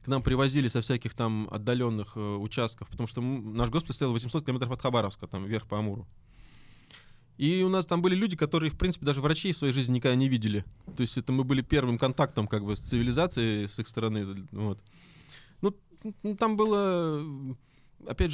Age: 20-39